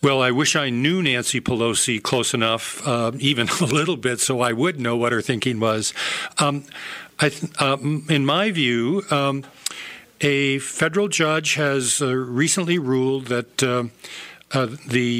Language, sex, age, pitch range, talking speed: English, male, 50-69, 125-150 Hz, 165 wpm